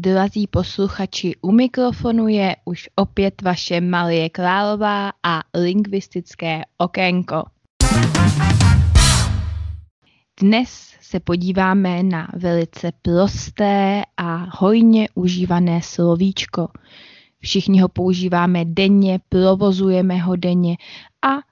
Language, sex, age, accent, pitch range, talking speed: Czech, female, 20-39, native, 170-190 Hz, 85 wpm